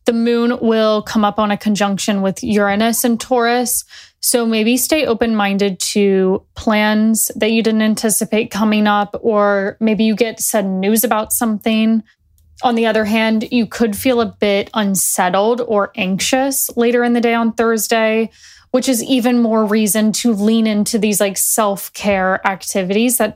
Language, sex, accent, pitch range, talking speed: English, female, American, 205-235 Hz, 165 wpm